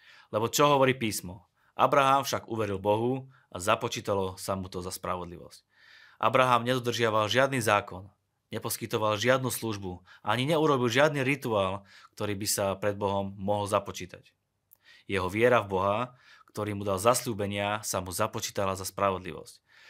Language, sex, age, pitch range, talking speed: Slovak, male, 20-39, 100-120 Hz, 140 wpm